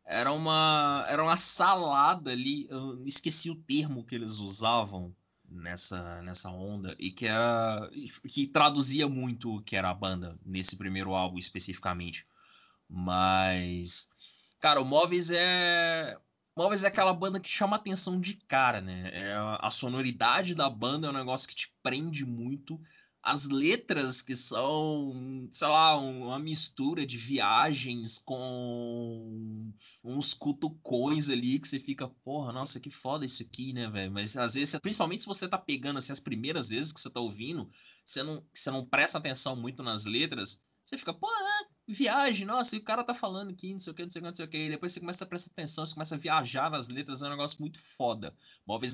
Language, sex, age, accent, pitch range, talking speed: Portuguese, male, 20-39, Brazilian, 115-160 Hz, 185 wpm